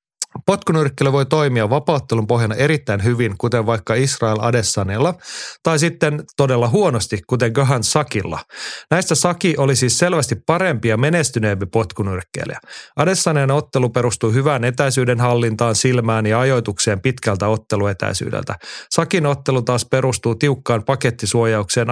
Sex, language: male, Finnish